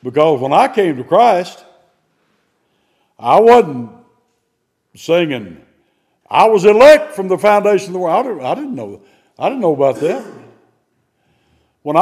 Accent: American